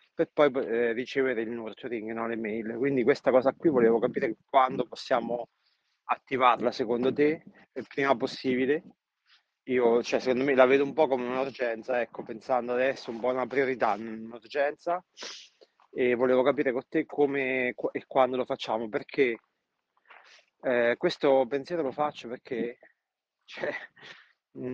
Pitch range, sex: 120-140 Hz, male